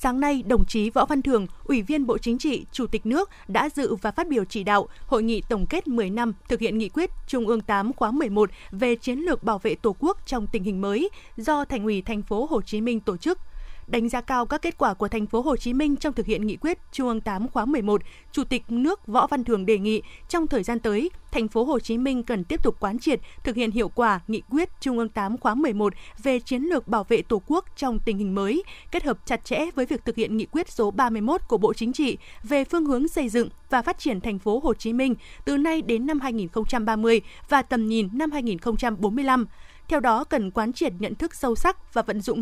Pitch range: 220-285 Hz